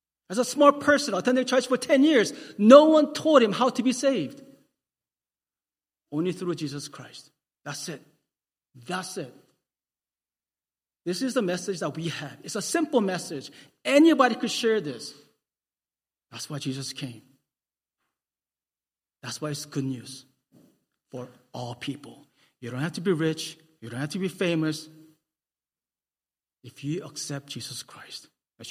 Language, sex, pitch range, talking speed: English, male, 135-180 Hz, 145 wpm